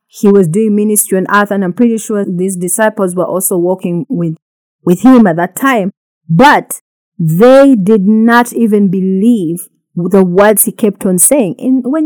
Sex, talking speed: female, 175 wpm